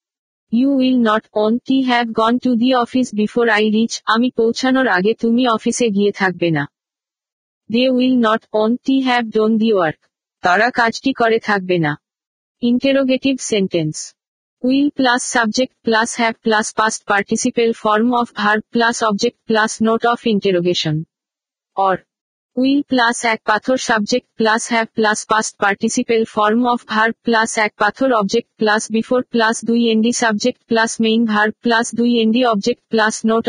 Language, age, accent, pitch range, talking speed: Bengali, 50-69, native, 215-245 Hz, 160 wpm